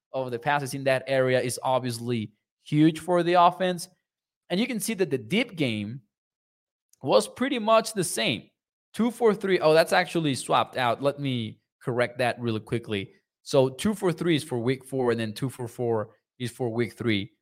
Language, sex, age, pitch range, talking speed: English, male, 20-39, 125-170 Hz, 170 wpm